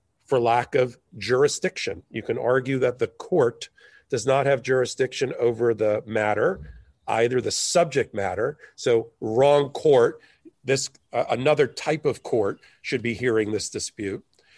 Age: 40-59